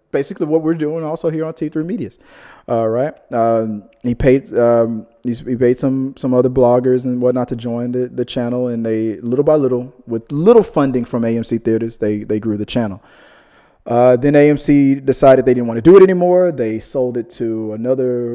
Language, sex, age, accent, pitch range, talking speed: English, male, 20-39, American, 115-130 Hz, 200 wpm